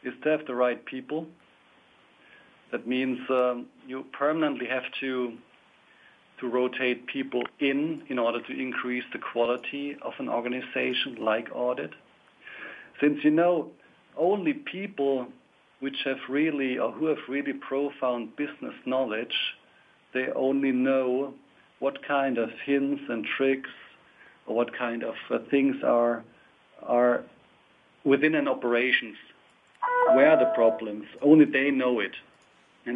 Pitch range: 130-150 Hz